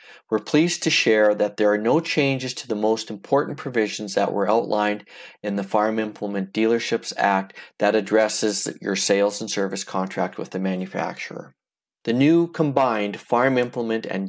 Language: English